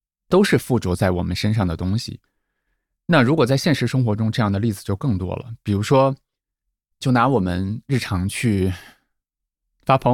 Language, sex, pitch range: Chinese, male, 95-130 Hz